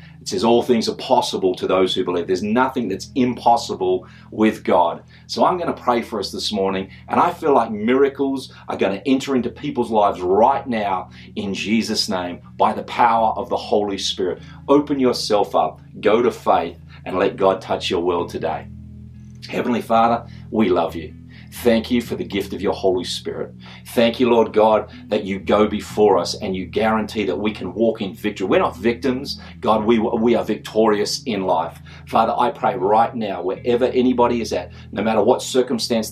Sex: male